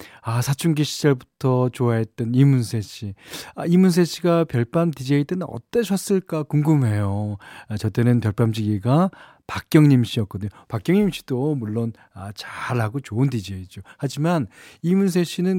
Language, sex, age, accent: Korean, male, 40-59, native